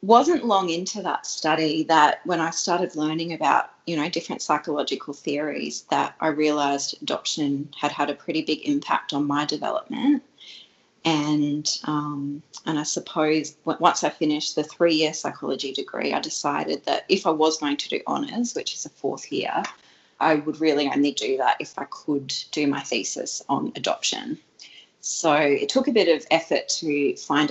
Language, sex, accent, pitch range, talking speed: English, female, Australian, 145-190 Hz, 170 wpm